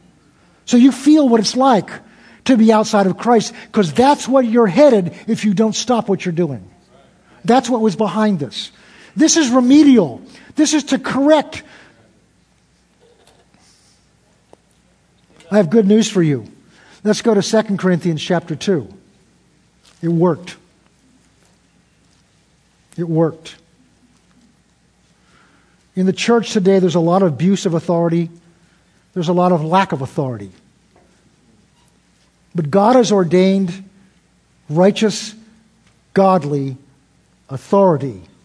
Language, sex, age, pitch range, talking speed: English, male, 50-69, 160-215 Hz, 120 wpm